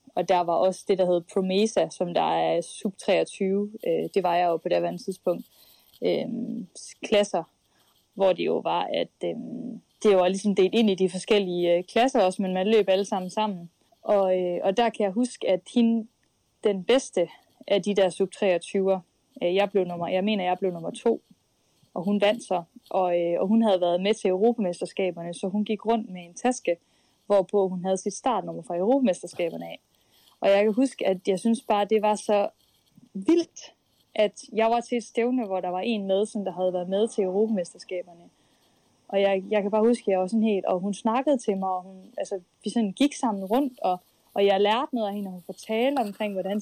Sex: female